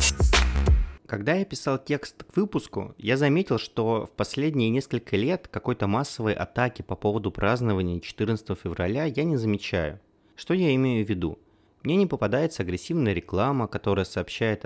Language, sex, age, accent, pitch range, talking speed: Russian, male, 20-39, native, 100-135 Hz, 145 wpm